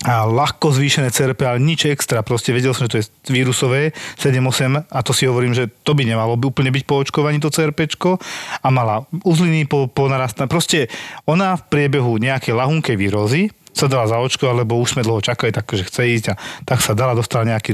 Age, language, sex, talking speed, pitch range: 40-59, Slovak, male, 200 wpm, 115-145 Hz